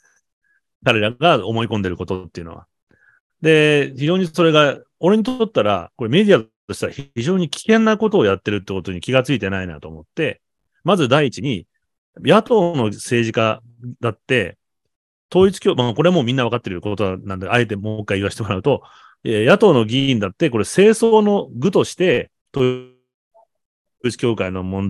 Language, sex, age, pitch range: Japanese, male, 30-49, 100-160 Hz